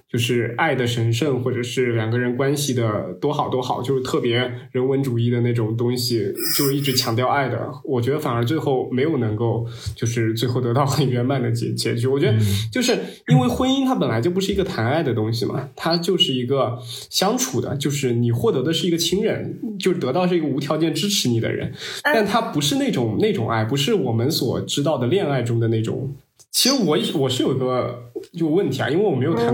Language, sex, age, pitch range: Chinese, male, 20-39, 120-160 Hz